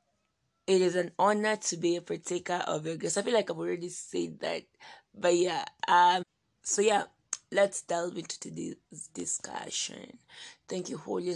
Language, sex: English, female